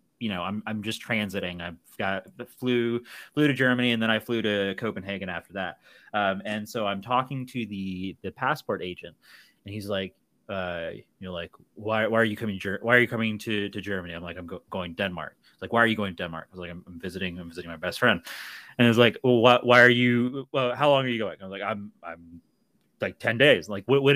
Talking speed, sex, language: 240 wpm, male, English